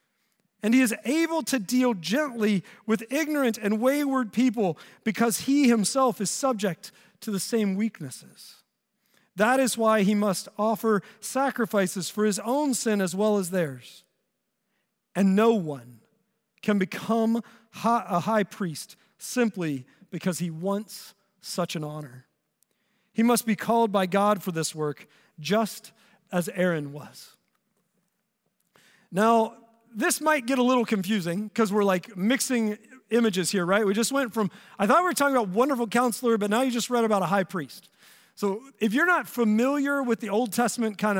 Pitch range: 195-240 Hz